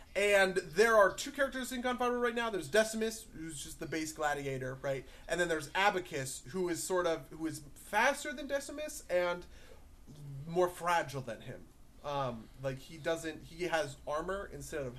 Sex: male